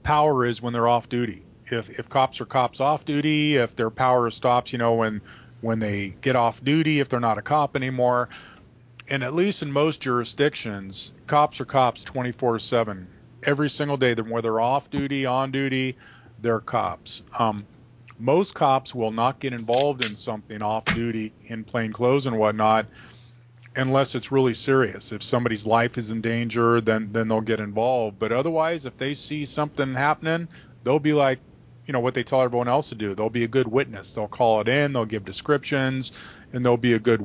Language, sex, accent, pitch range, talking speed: English, male, American, 115-135 Hz, 190 wpm